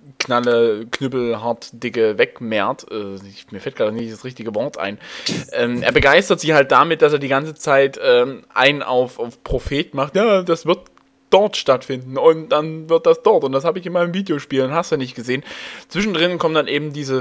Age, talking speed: 20-39, 205 wpm